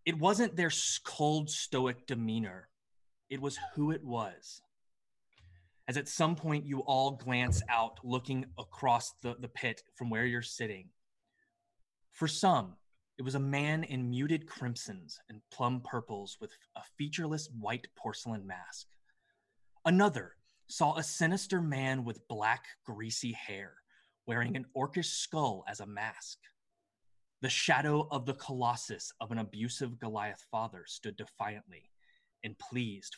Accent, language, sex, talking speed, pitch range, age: American, English, male, 135 wpm, 110-150 Hz, 20-39